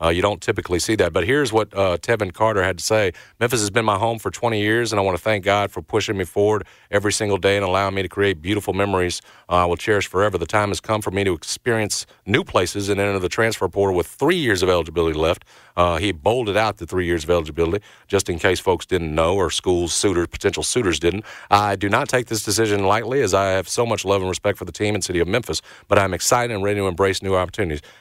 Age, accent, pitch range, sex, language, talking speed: 40-59, American, 85-100 Hz, male, English, 255 wpm